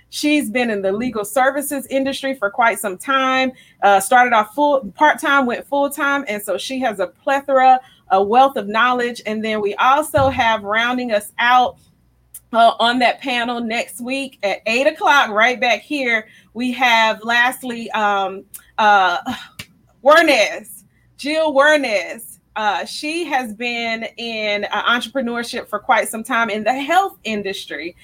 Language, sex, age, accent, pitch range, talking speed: English, female, 30-49, American, 205-265 Hz, 155 wpm